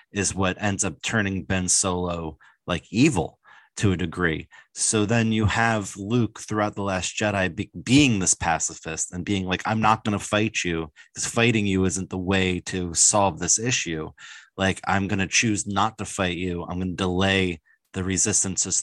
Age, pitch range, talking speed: 30-49, 90-110 Hz, 175 wpm